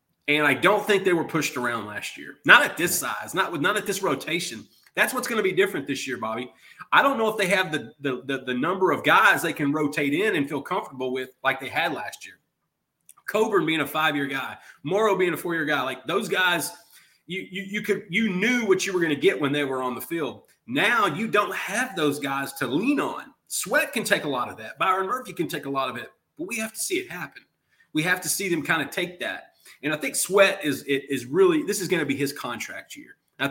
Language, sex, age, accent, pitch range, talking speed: English, male, 30-49, American, 145-205 Hz, 260 wpm